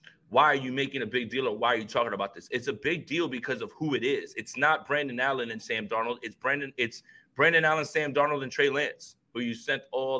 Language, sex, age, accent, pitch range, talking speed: English, male, 20-39, American, 125-150 Hz, 260 wpm